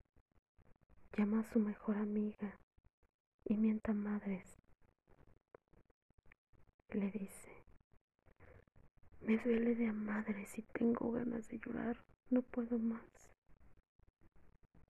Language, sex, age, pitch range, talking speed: Spanish, female, 20-39, 205-235 Hz, 90 wpm